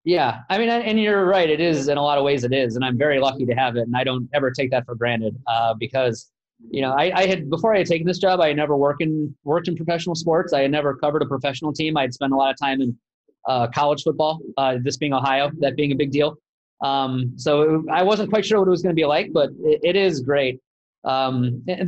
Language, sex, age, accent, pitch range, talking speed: English, male, 30-49, American, 135-170 Hz, 270 wpm